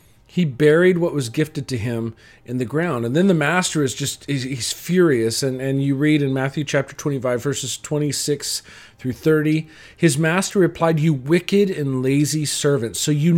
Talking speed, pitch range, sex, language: 190 wpm, 125-160 Hz, male, English